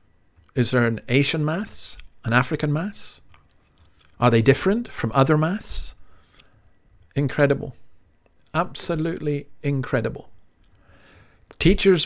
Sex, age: male, 50-69